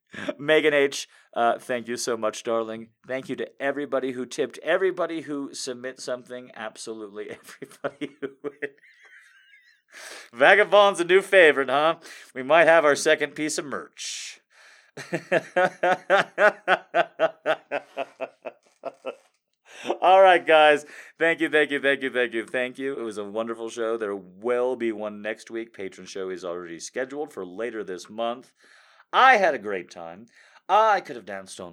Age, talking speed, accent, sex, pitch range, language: 30-49, 145 wpm, American, male, 110-150 Hz, English